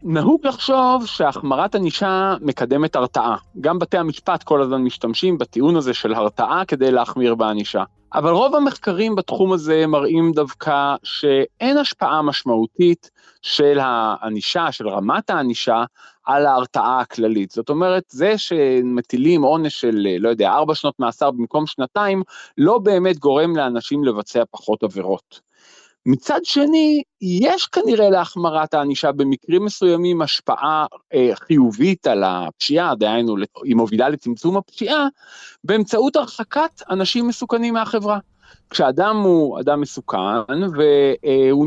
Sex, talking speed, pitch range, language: male, 125 wpm, 125-205 Hz, Hebrew